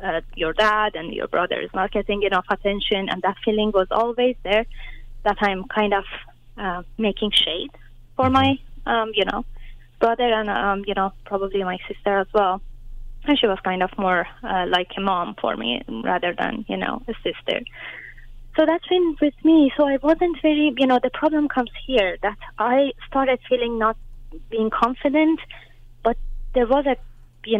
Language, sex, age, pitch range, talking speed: English, female, 20-39, 185-245 Hz, 185 wpm